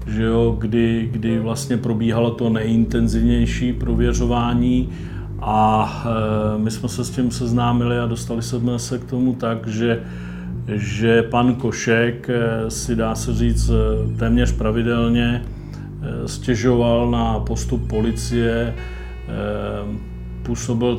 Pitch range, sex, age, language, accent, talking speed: 115-125 Hz, male, 40-59, Czech, native, 110 wpm